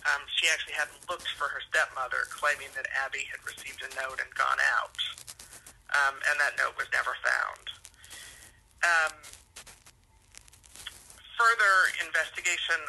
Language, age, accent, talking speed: English, 40-59, American, 130 wpm